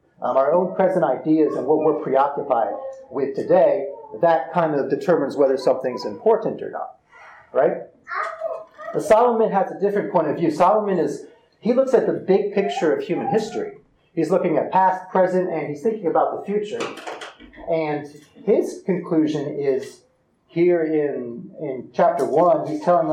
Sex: male